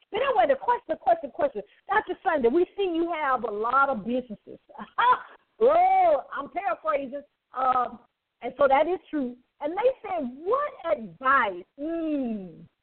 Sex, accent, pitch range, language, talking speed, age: female, American, 250-355 Hz, English, 155 wpm, 40-59